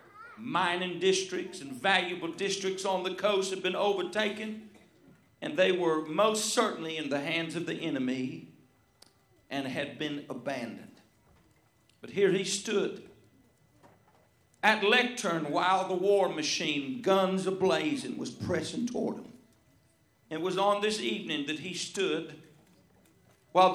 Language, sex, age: English, male, 50-69